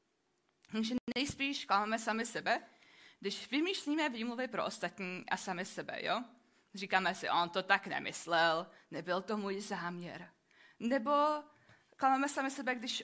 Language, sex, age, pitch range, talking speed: Czech, female, 20-39, 200-265 Hz, 135 wpm